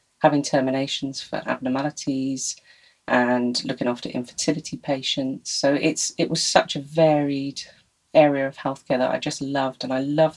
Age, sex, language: 30-49, female, English